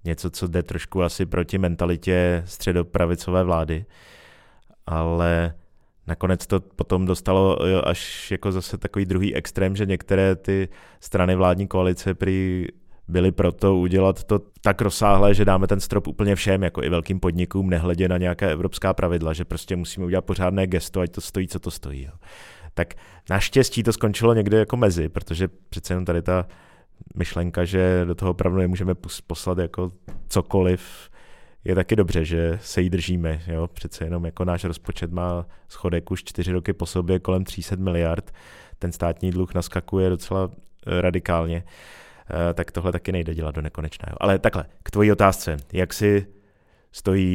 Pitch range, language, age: 85-95 Hz, Czech, 30-49